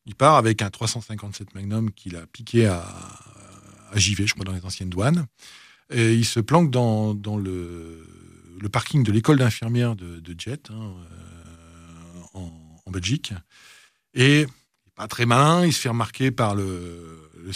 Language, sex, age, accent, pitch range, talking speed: French, male, 40-59, French, 100-135 Hz, 170 wpm